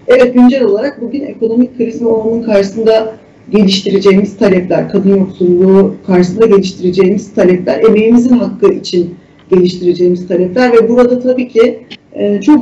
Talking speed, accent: 120 wpm, native